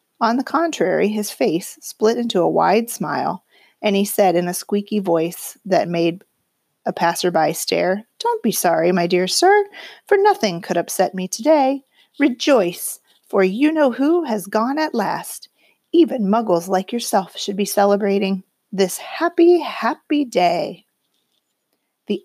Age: 40-59